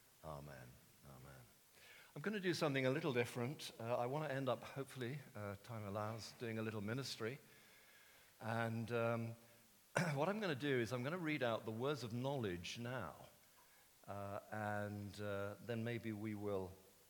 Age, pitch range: 50-69, 105-130 Hz